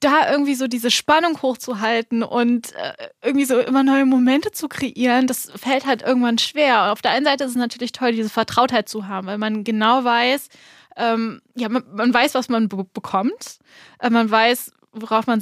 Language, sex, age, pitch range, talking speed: German, female, 10-29, 225-260 Hz, 195 wpm